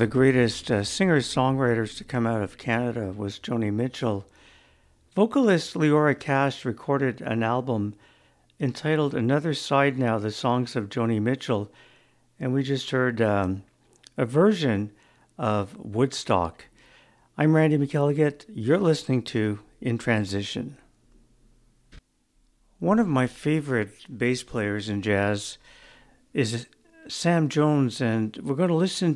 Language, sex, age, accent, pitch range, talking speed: English, male, 60-79, American, 110-145 Hz, 120 wpm